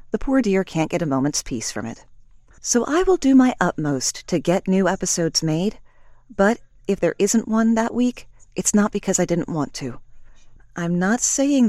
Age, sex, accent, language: 40-59, female, American, English